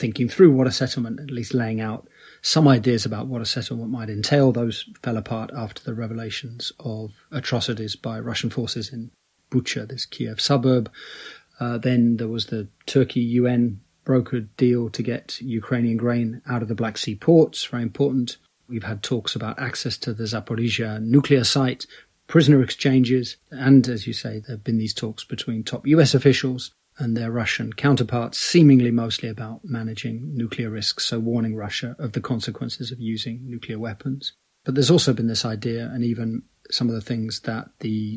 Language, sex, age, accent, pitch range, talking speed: English, male, 30-49, British, 115-130 Hz, 180 wpm